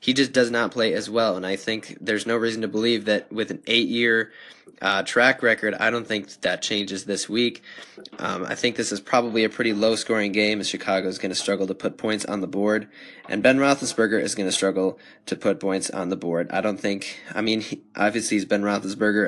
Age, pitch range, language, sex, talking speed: 10-29, 100-120 Hz, English, male, 235 wpm